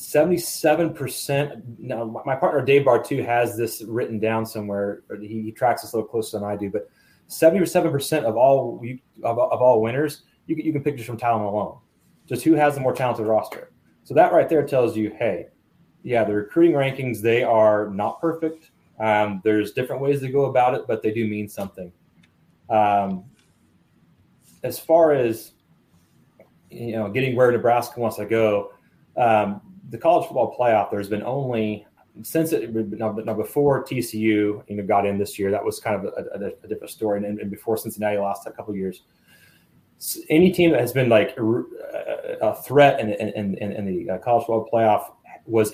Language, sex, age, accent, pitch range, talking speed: English, male, 30-49, American, 105-130 Hz, 190 wpm